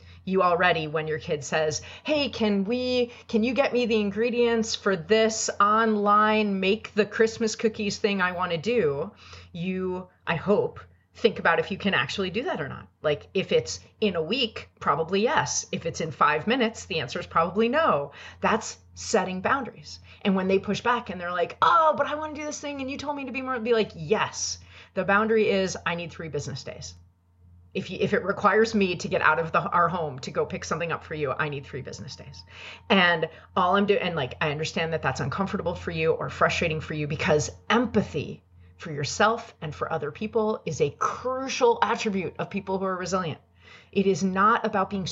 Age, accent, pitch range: 30-49, American, 155-225 Hz